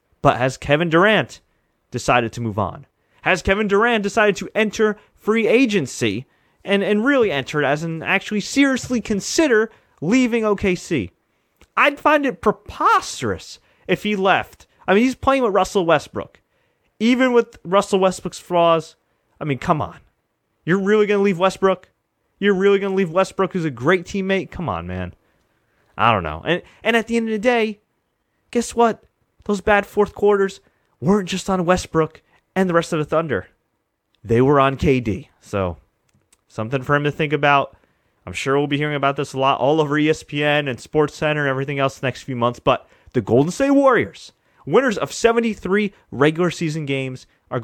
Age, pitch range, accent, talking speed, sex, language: 30-49, 135-205 Hz, American, 180 wpm, male, English